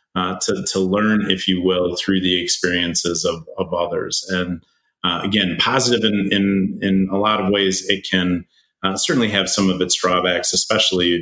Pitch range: 90-100 Hz